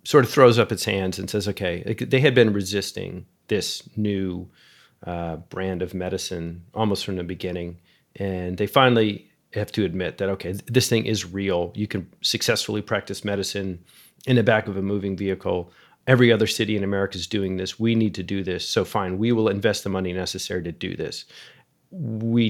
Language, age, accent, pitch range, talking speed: English, 30-49, American, 95-115 Hz, 190 wpm